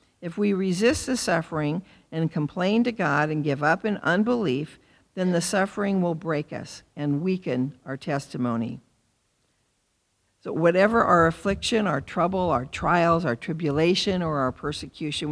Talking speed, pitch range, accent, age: 145 wpm, 140-185 Hz, American, 50-69